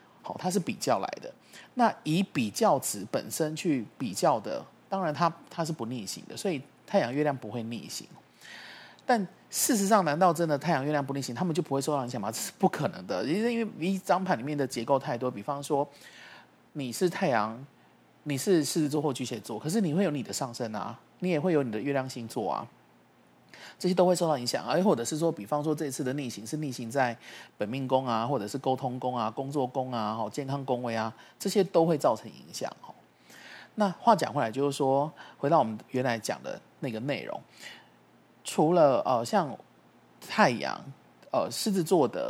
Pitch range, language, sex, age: 125-170 Hz, Chinese, male, 30-49